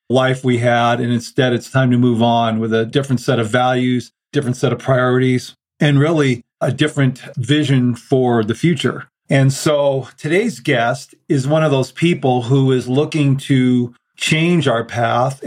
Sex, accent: male, American